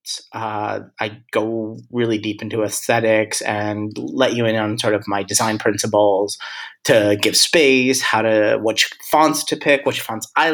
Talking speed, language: 165 wpm, English